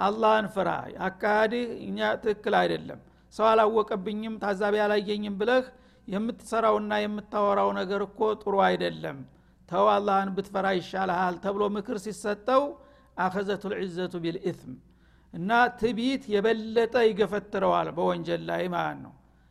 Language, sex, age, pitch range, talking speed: Amharic, male, 60-79, 190-225 Hz, 100 wpm